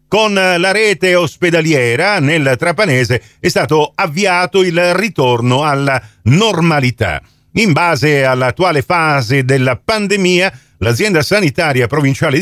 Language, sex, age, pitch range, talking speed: Italian, male, 40-59, 125-185 Hz, 105 wpm